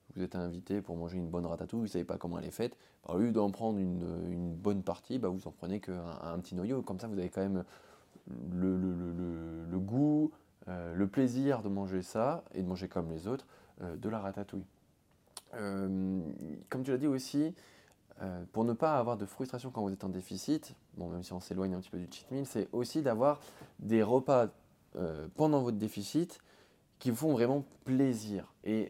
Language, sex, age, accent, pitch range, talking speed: French, male, 20-39, French, 90-125 Hz, 215 wpm